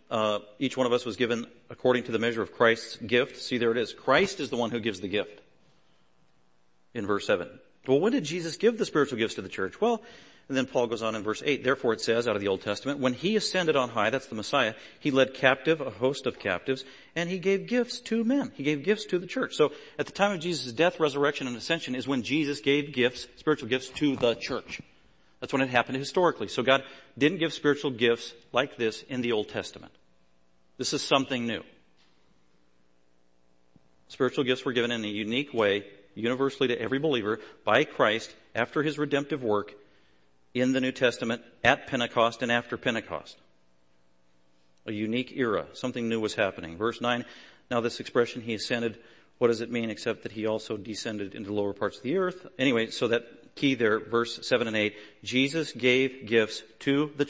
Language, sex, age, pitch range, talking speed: English, male, 40-59, 105-140 Hz, 205 wpm